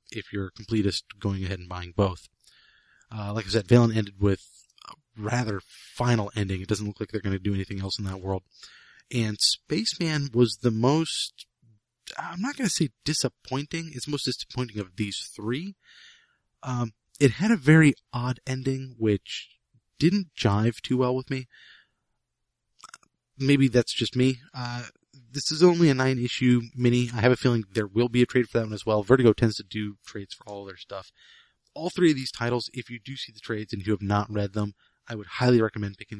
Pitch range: 105-125 Hz